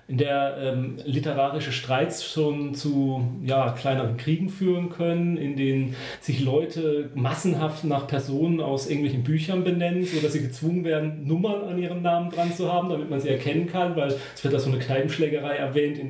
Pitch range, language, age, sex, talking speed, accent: 130-160 Hz, German, 40-59, male, 180 wpm, German